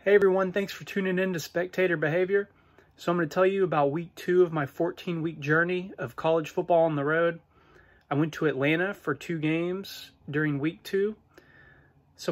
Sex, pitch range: male, 140-170 Hz